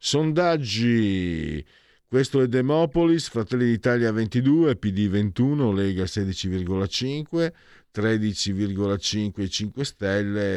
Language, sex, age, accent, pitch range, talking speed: Italian, male, 50-69, native, 90-125 Hz, 80 wpm